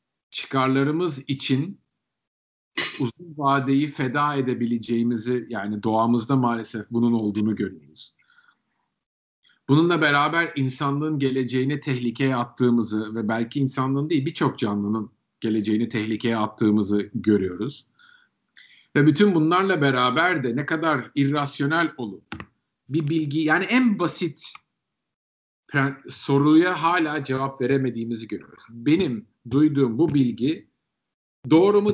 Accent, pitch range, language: native, 120-160 Hz, Turkish